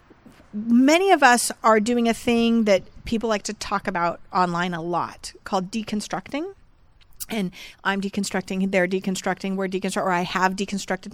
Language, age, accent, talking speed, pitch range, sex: English, 30-49, American, 155 wpm, 195-240 Hz, female